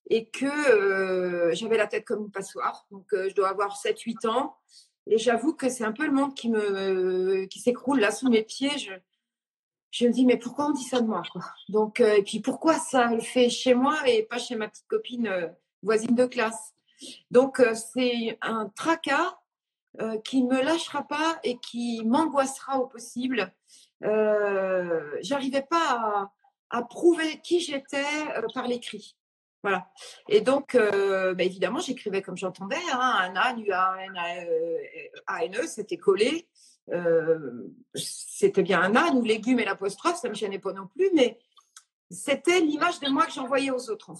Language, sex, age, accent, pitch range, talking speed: French, female, 40-59, French, 200-285 Hz, 180 wpm